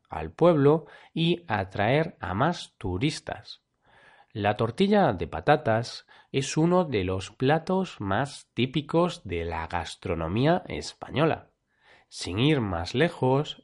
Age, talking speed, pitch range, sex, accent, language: 30-49, 115 wpm, 100-155 Hz, male, Spanish, Spanish